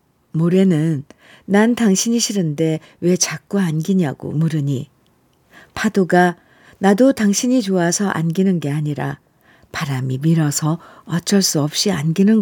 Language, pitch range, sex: Korean, 170-220 Hz, female